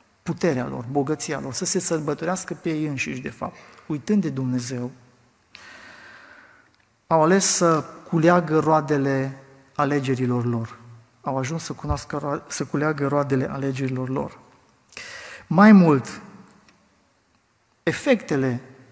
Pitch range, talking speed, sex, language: 130-175 Hz, 110 wpm, male, Romanian